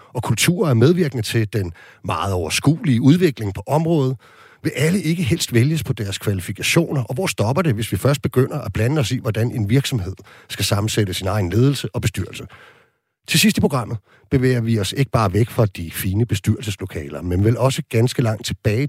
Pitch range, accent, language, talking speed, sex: 105-140 Hz, native, Danish, 195 wpm, male